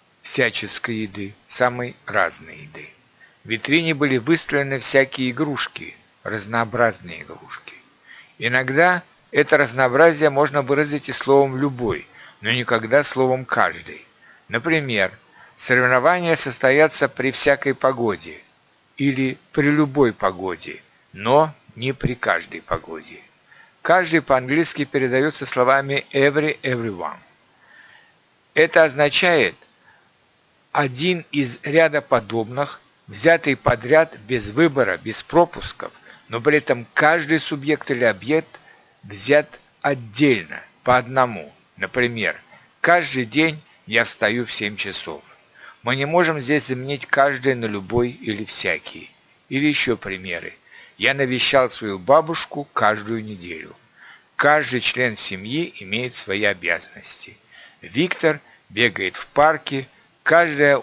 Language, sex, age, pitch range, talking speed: Russian, male, 60-79, 115-150 Hz, 105 wpm